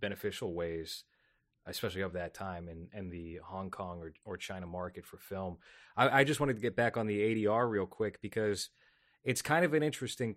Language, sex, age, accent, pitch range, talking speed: English, male, 30-49, American, 95-115 Hz, 205 wpm